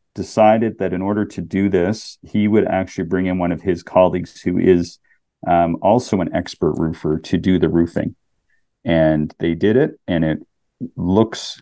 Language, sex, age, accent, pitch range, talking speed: English, male, 40-59, American, 85-100 Hz, 175 wpm